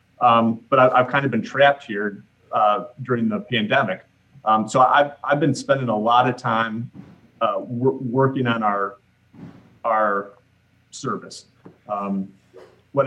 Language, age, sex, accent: English, 30-49, male, American